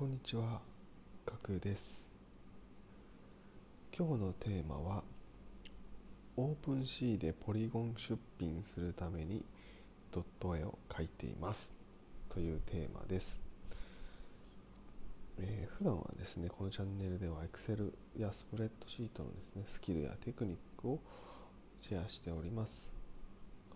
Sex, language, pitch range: male, Japanese, 85-105 Hz